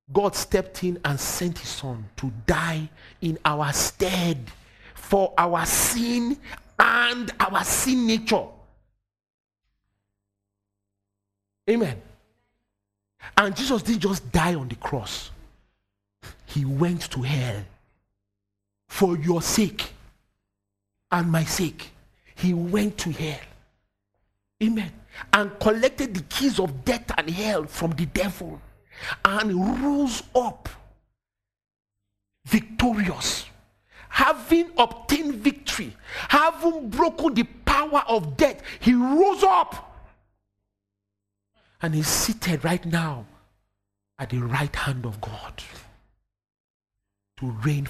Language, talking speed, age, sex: English, 105 wpm, 50-69, male